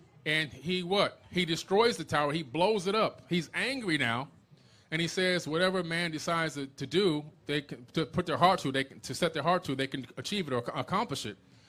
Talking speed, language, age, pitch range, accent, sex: 220 wpm, English, 30-49, 140-170 Hz, American, male